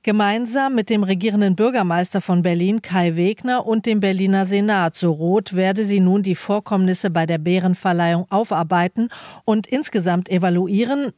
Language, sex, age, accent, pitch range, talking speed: German, female, 40-59, German, 175-210 Hz, 145 wpm